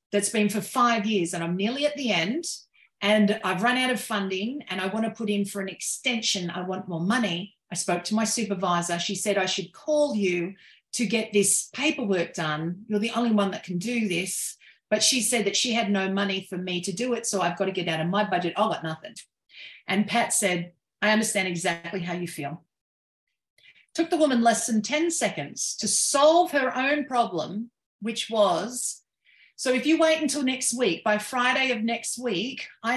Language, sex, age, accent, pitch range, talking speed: English, female, 40-59, Australian, 190-245 Hz, 210 wpm